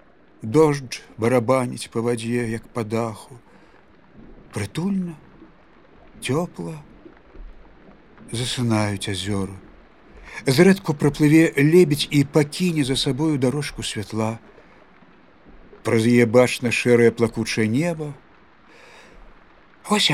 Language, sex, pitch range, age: English, male, 115-150 Hz, 50-69